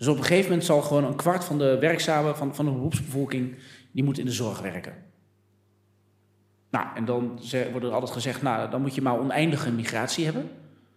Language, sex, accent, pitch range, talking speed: Dutch, male, Dutch, 115-145 Hz, 200 wpm